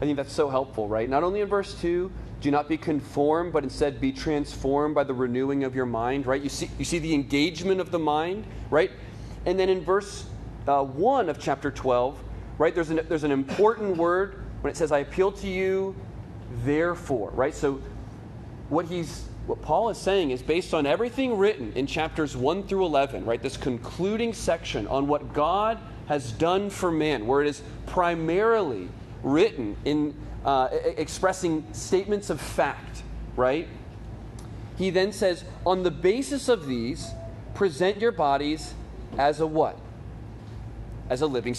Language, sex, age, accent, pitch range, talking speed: English, male, 30-49, American, 120-175 Hz, 170 wpm